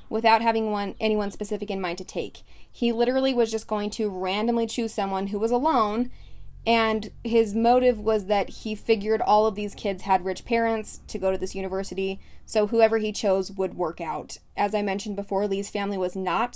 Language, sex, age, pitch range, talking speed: English, female, 20-39, 195-230 Hz, 200 wpm